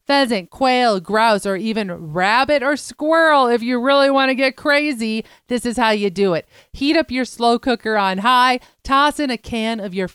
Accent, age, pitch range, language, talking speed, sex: American, 40-59, 200-255 Hz, English, 200 wpm, female